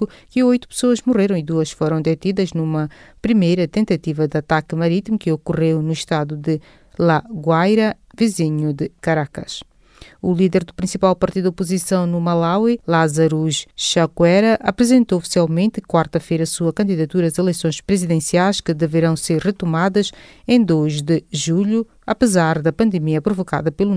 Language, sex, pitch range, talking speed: English, female, 155-195 Hz, 140 wpm